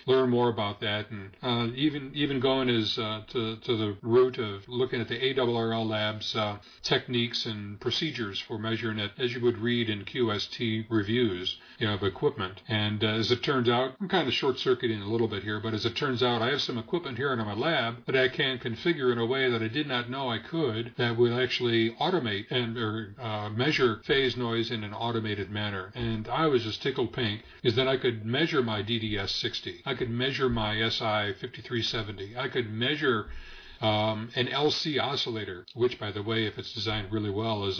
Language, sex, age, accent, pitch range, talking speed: English, male, 40-59, American, 105-125 Hz, 215 wpm